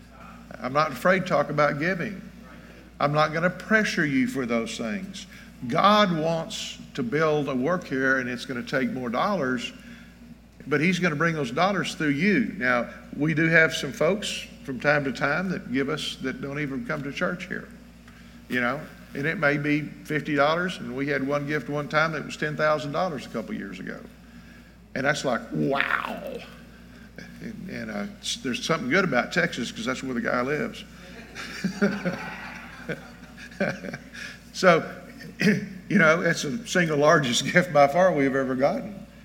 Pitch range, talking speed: 140-190 Hz, 165 wpm